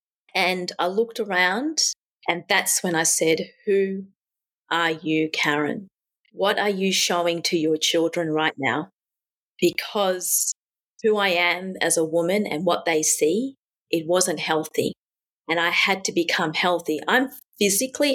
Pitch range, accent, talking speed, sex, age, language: 170-205 Hz, Australian, 145 wpm, female, 30-49, English